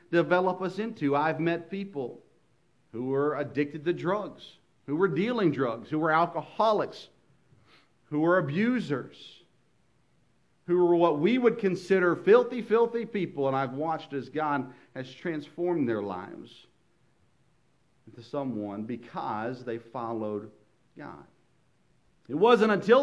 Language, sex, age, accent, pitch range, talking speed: English, male, 50-69, American, 115-165 Hz, 125 wpm